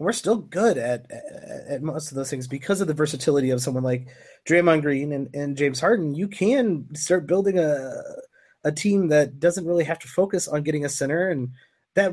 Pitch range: 140-190 Hz